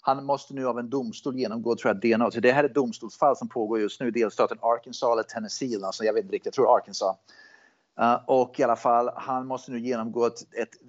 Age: 30-49